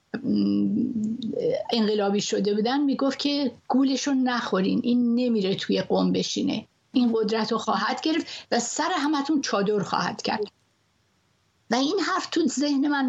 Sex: female